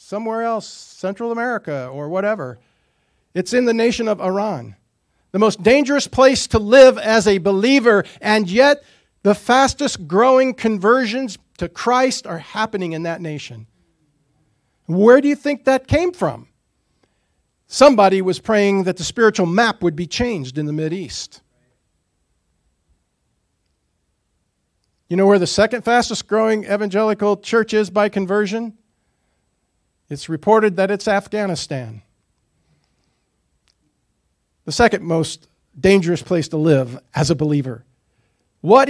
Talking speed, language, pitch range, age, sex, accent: 125 wpm, English, 160-260 Hz, 50-69, male, American